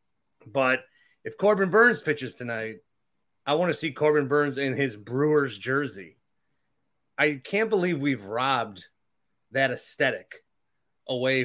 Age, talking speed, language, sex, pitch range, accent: 30-49, 125 wpm, English, male, 120-150 Hz, American